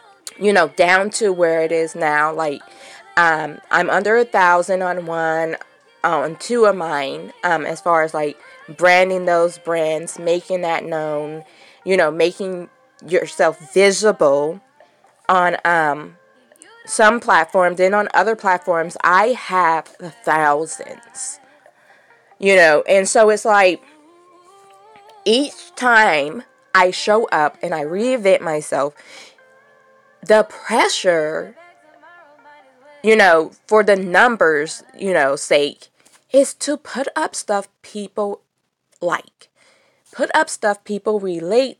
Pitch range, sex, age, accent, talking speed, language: 170-230 Hz, female, 20-39, American, 120 wpm, English